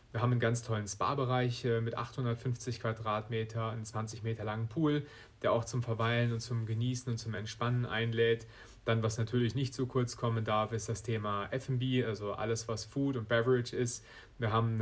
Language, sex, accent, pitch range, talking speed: German, male, German, 110-125 Hz, 190 wpm